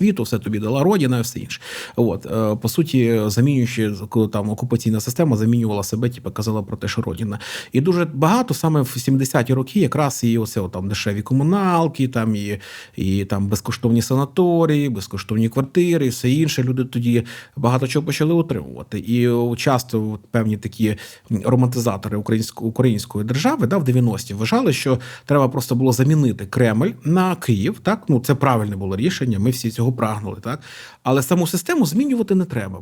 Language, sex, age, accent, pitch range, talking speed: Ukrainian, male, 30-49, native, 110-150 Hz, 165 wpm